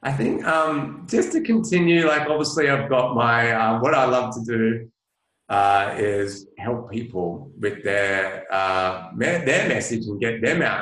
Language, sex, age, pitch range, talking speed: English, male, 30-49, 95-115 Hz, 170 wpm